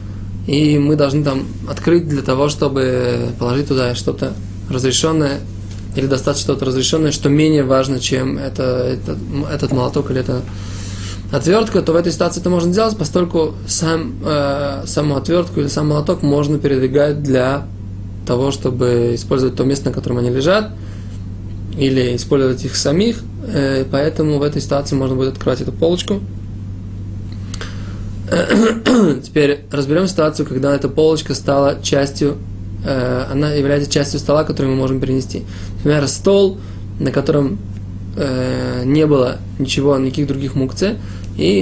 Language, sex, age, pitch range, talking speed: Russian, male, 20-39, 100-145 Hz, 135 wpm